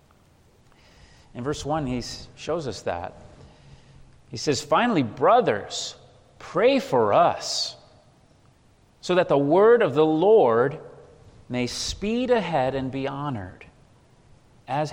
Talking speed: 115 wpm